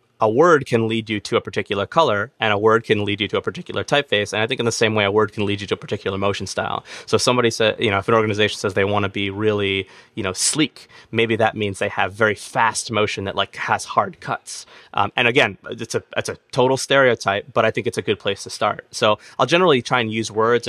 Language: English